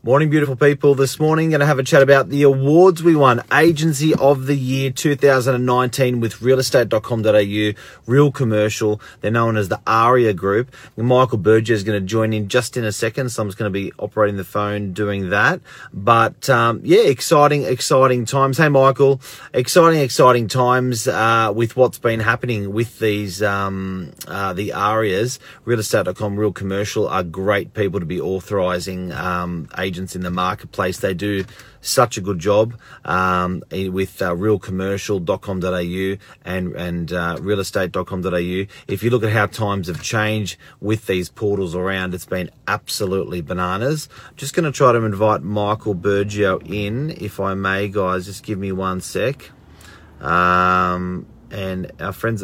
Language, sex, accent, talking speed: English, male, Australian, 160 wpm